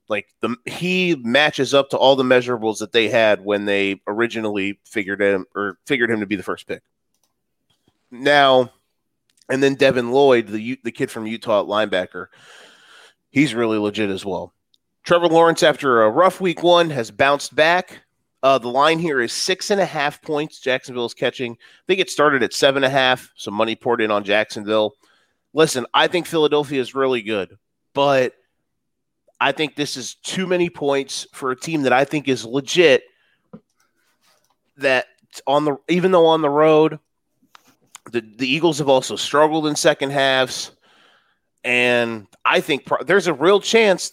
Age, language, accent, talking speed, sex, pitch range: 30-49, English, American, 175 wpm, male, 120-165 Hz